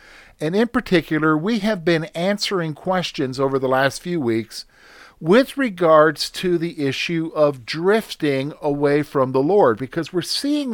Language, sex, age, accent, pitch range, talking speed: English, male, 50-69, American, 135-200 Hz, 150 wpm